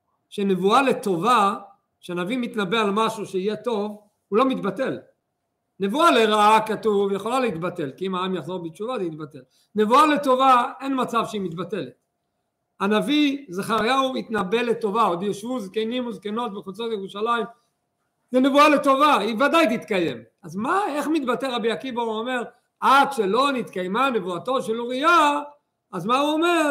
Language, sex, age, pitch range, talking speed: Hebrew, male, 50-69, 185-265 Hz, 140 wpm